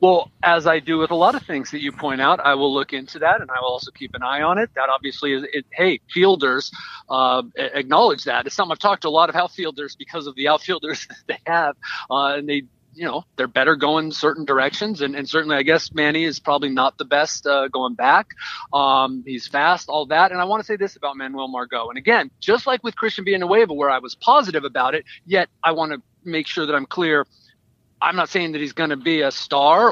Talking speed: 245 wpm